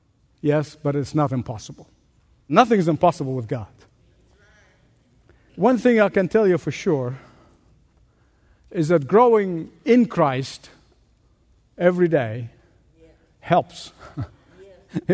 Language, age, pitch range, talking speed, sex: English, 60-79, 135-200 Hz, 105 wpm, male